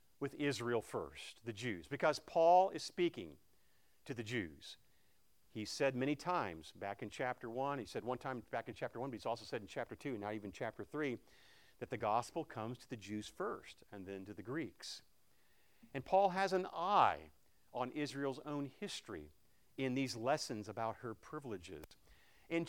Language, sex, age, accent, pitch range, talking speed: English, male, 50-69, American, 120-180 Hz, 180 wpm